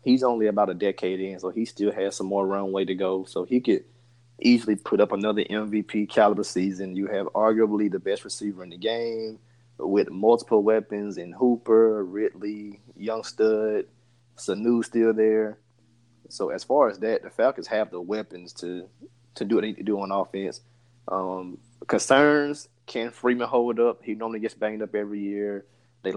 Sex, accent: male, American